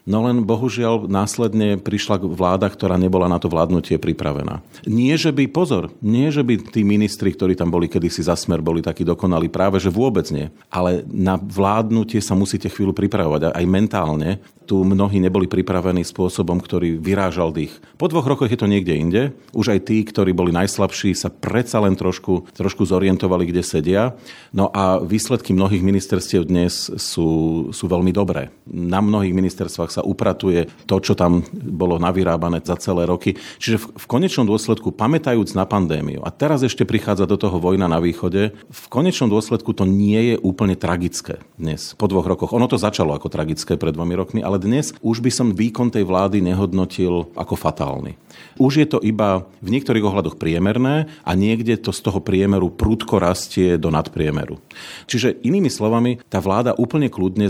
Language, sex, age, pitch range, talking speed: Slovak, male, 40-59, 90-110 Hz, 175 wpm